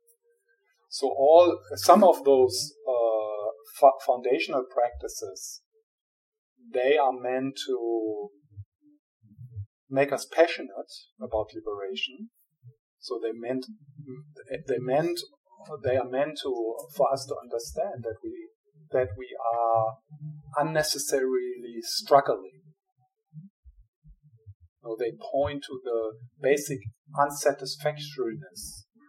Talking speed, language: 95 wpm, English